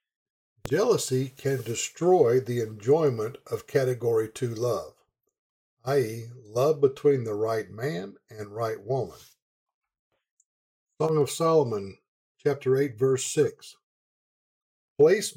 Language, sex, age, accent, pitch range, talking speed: English, male, 50-69, American, 120-170 Hz, 100 wpm